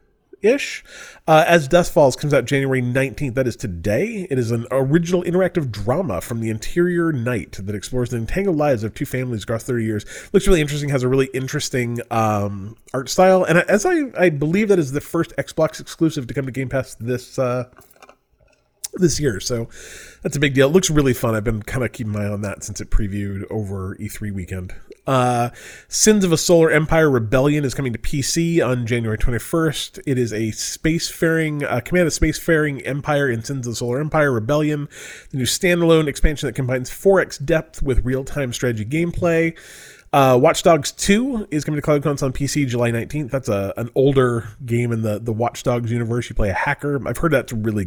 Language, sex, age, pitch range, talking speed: English, male, 30-49, 120-160 Hz, 205 wpm